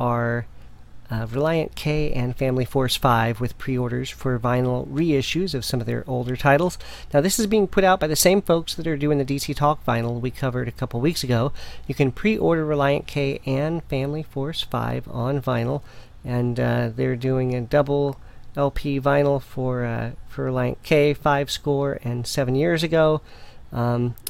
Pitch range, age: 120-145 Hz, 40-59